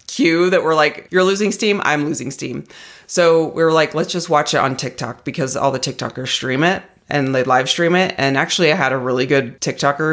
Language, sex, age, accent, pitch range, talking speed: English, female, 30-49, American, 135-185 Hz, 225 wpm